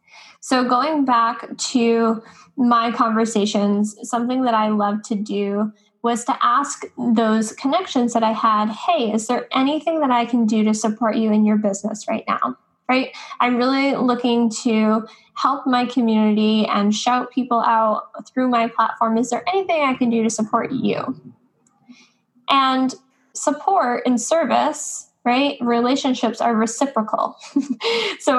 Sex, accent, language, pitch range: female, American, English, 220-260 Hz